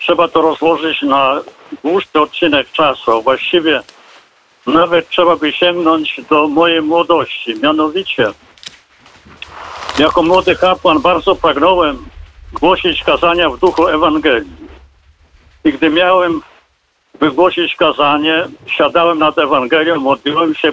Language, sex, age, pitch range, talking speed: Polish, male, 70-89, 145-175 Hz, 105 wpm